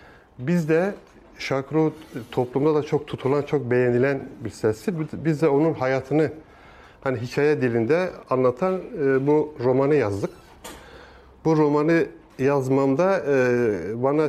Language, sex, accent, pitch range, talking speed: Turkish, male, native, 120-155 Hz, 110 wpm